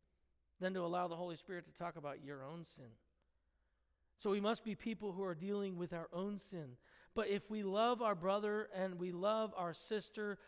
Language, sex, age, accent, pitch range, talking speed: English, male, 40-59, American, 160-230 Hz, 200 wpm